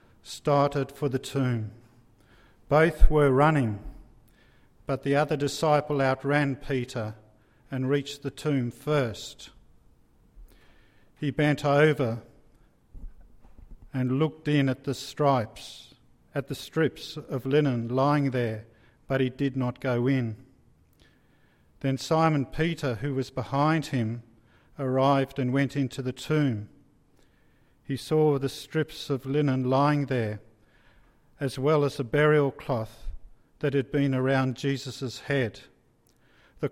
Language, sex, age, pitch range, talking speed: English, male, 50-69, 120-145 Hz, 120 wpm